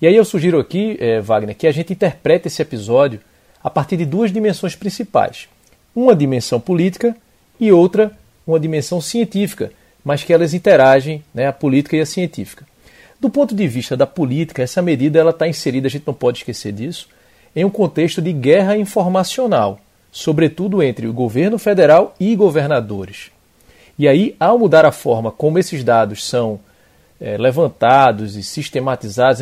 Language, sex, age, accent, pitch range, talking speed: Portuguese, male, 40-59, Brazilian, 130-185 Hz, 160 wpm